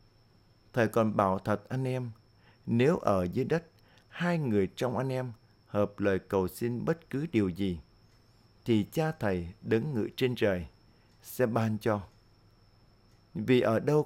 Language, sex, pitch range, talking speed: Vietnamese, male, 105-120 Hz, 155 wpm